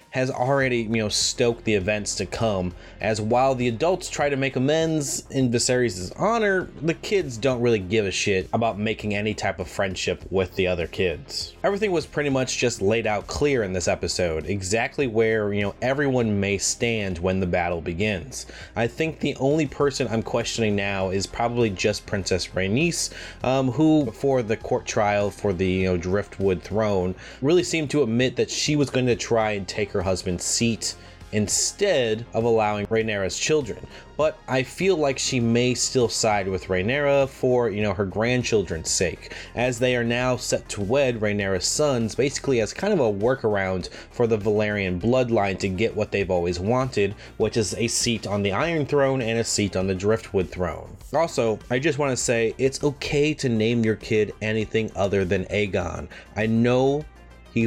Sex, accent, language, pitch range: male, American, English, 95-130 Hz